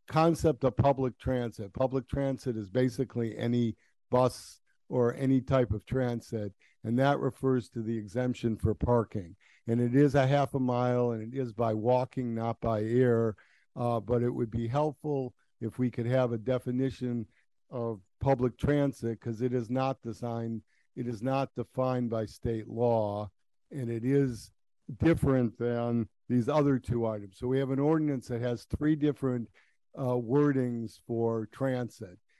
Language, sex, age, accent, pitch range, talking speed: English, male, 50-69, American, 115-130 Hz, 160 wpm